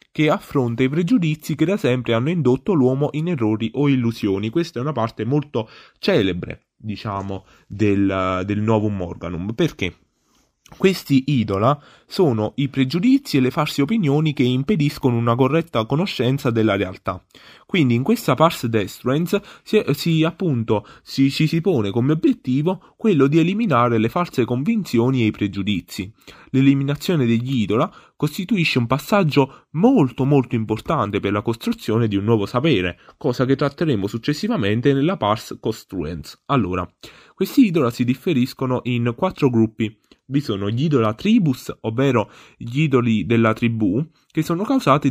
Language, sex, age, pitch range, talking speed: Italian, male, 20-39, 110-155 Hz, 140 wpm